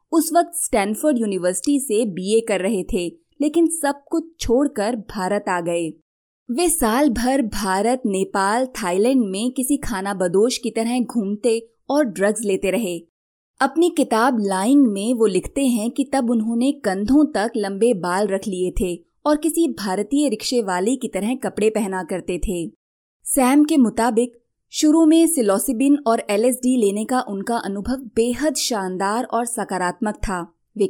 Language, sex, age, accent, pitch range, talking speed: Hindi, female, 20-39, native, 195-255 Hz, 155 wpm